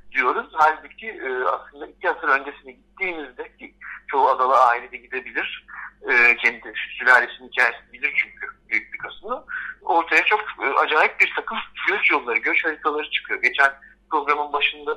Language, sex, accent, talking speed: Turkish, male, native, 145 wpm